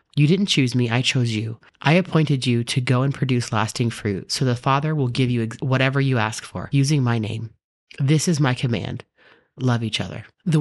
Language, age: English, 30-49